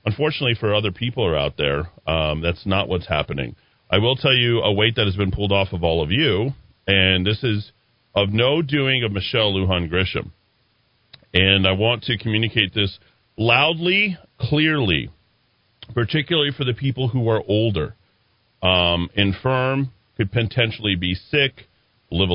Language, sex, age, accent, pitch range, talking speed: English, male, 40-59, American, 95-120 Hz, 160 wpm